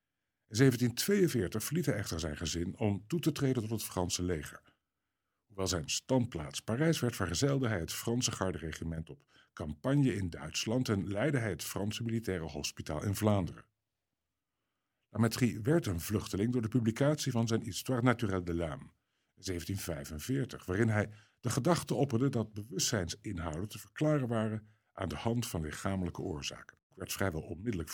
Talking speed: 155 wpm